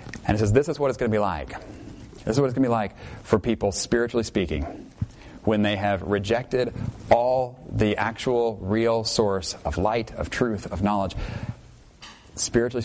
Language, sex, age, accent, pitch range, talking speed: English, male, 30-49, American, 105-125 Hz, 180 wpm